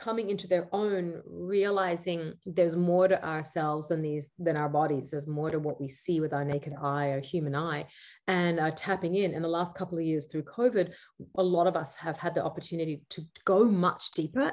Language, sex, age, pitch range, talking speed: English, female, 30-49, 165-195 Hz, 210 wpm